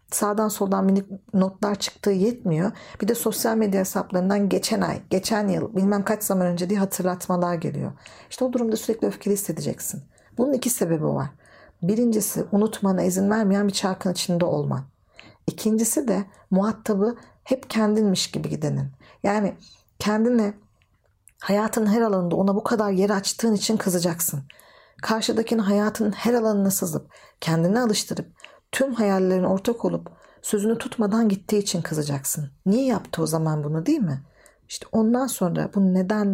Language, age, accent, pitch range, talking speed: Turkish, 50-69, native, 175-220 Hz, 145 wpm